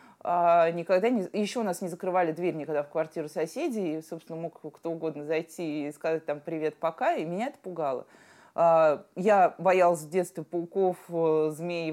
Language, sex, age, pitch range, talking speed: Russian, female, 20-39, 160-200 Hz, 170 wpm